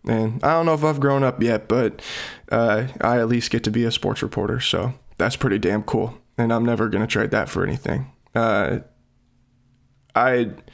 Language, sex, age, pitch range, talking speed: English, male, 20-39, 115-125 Hz, 200 wpm